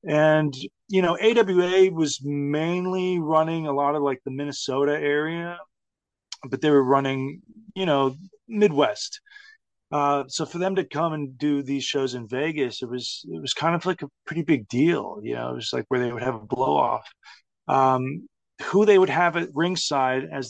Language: English